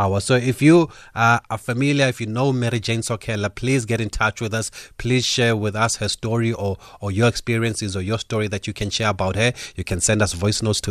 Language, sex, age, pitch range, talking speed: English, male, 30-49, 95-110 Hz, 240 wpm